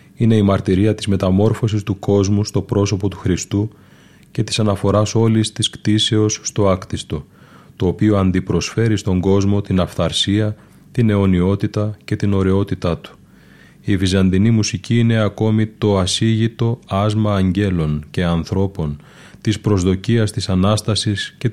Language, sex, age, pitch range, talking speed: Greek, male, 30-49, 95-110 Hz, 135 wpm